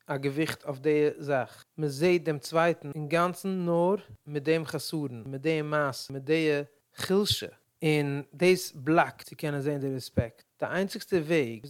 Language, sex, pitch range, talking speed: English, male, 135-160 Hz, 170 wpm